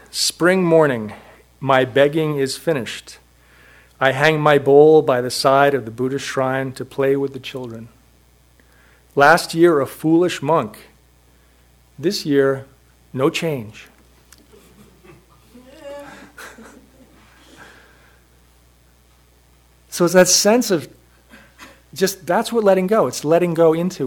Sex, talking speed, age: male, 110 wpm, 40-59